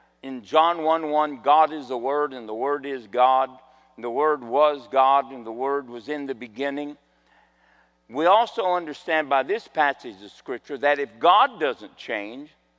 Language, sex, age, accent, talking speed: English, male, 50-69, American, 175 wpm